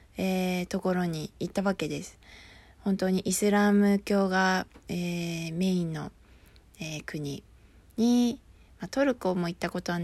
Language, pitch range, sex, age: Japanese, 175-235 Hz, female, 20-39